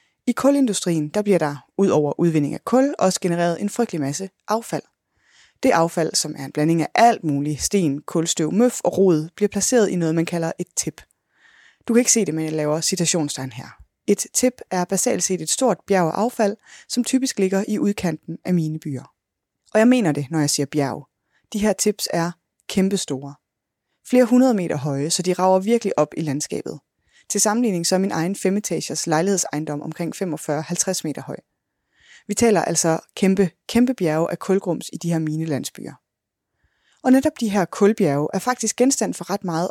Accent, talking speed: native, 185 wpm